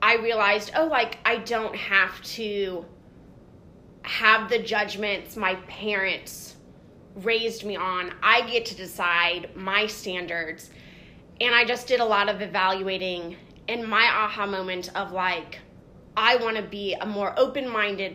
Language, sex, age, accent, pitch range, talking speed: English, female, 20-39, American, 190-230 Hz, 140 wpm